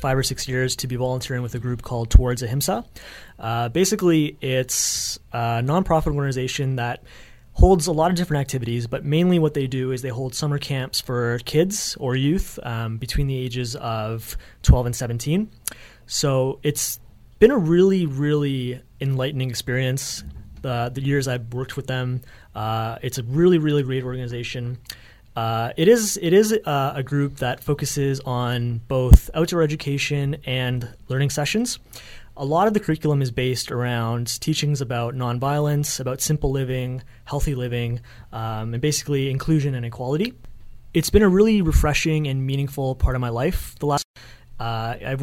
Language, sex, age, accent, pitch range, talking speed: English, male, 30-49, American, 125-145 Hz, 165 wpm